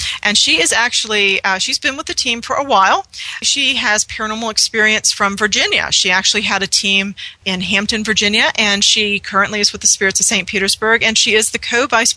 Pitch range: 190-230 Hz